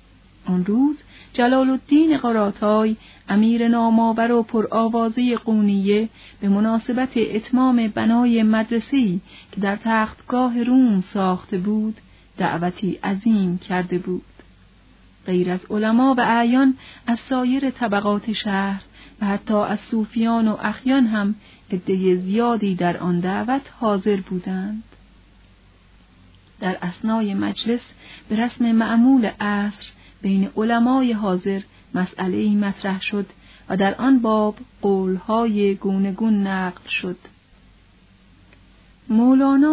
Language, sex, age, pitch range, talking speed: Persian, female, 40-59, 190-230 Hz, 110 wpm